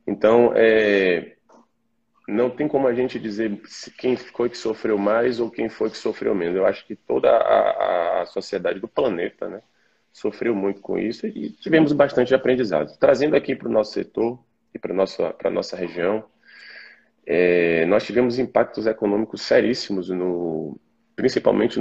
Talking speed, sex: 145 wpm, male